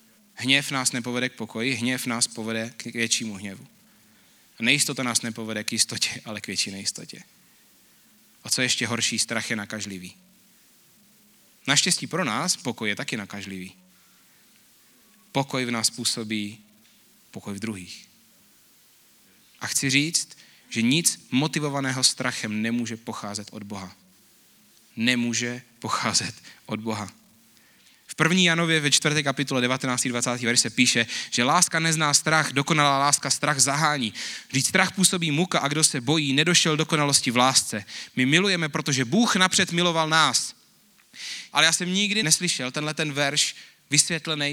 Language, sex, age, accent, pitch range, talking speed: Czech, male, 30-49, native, 120-160 Hz, 140 wpm